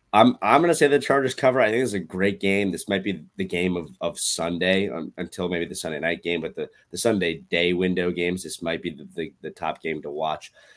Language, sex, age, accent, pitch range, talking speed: English, male, 20-39, American, 85-95 Hz, 260 wpm